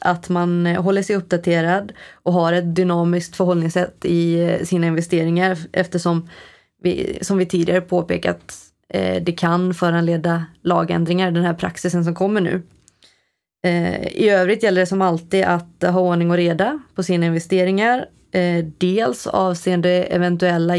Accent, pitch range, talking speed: native, 170-185 Hz, 135 wpm